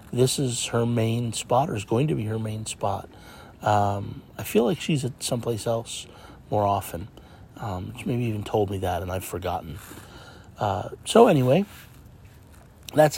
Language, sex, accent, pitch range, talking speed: English, male, American, 105-125 Hz, 170 wpm